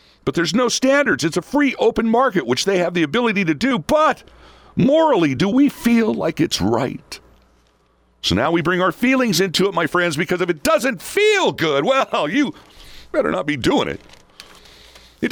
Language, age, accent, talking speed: English, 50-69, American, 190 wpm